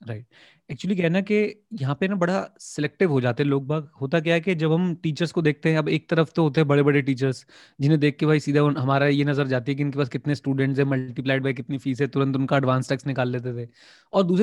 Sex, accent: male, Indian